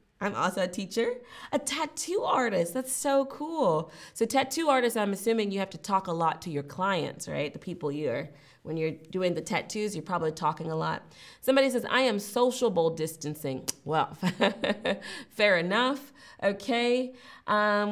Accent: American